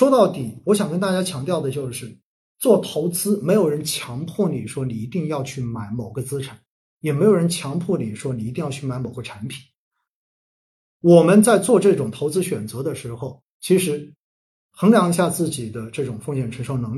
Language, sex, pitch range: Chinese, male, 125-185 Hz